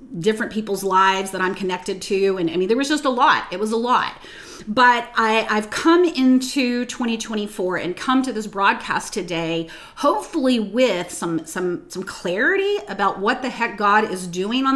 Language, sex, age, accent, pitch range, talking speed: English, female, 30-49, American, 190-250 Hz, 185 wpm